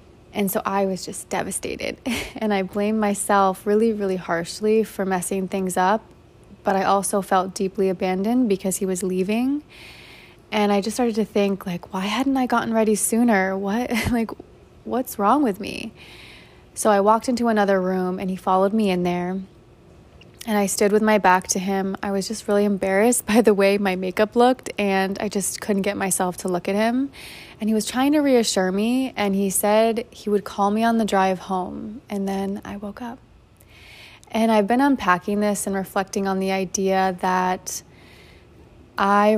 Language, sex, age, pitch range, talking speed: English, female, 20-39, 190-215 Hz, 185 wpm